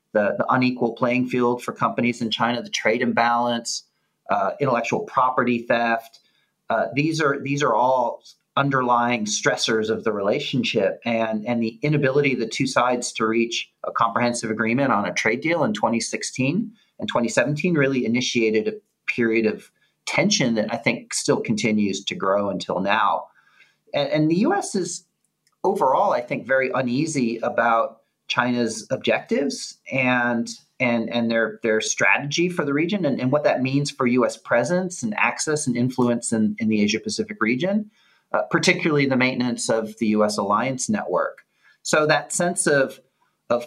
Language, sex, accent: English, male, American